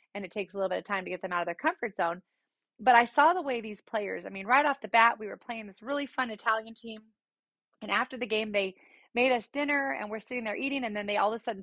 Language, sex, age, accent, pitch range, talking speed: English, female, 30-49, American, 200-255 Hz, 295 wpm